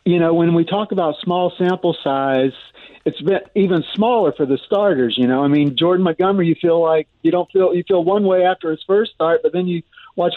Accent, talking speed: American, 230 wpm